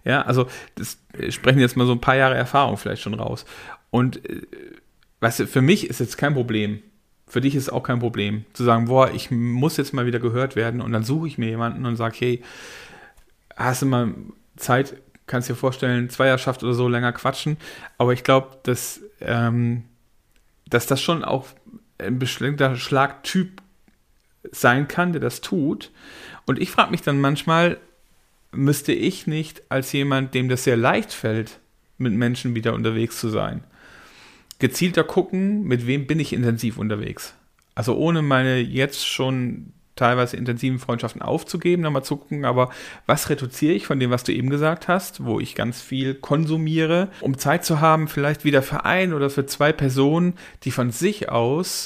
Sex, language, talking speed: male, German, 175 wpm